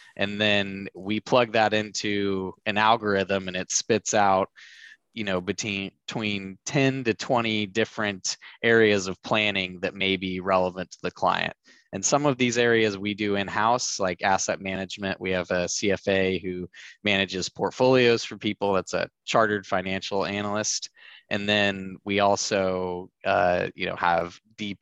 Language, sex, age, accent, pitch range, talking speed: English, male, 20-39, American, 95-105 Hz, 155 wpm